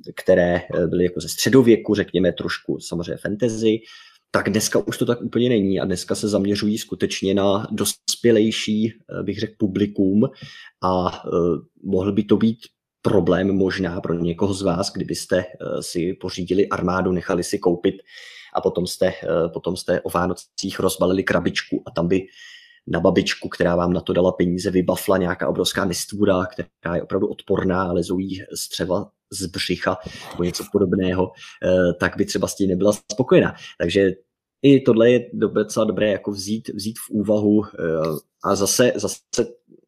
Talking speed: 150 wpm